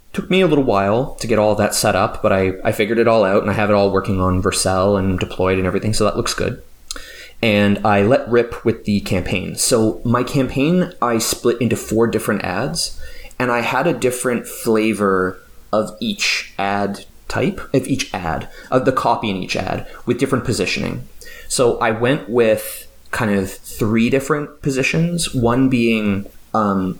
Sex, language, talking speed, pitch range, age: male, English, 185 wpm, 100-125 Hz, 20-39